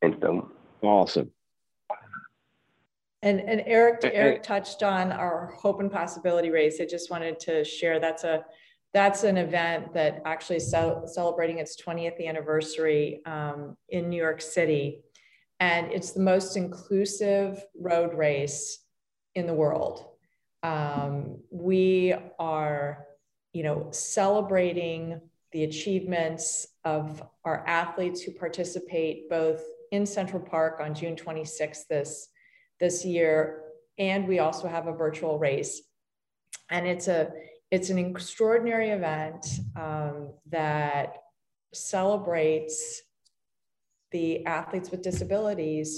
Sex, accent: female, American